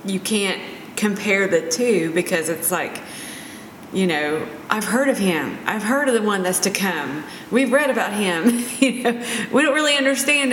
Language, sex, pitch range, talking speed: English, female, 170-230 Hz, 170 wpm